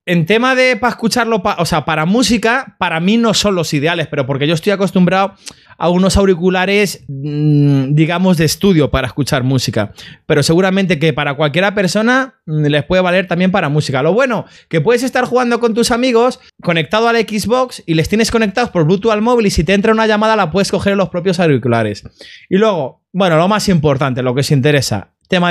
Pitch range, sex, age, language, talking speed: 150-200 Hz, male, 20-39, Spanish, 200 wpm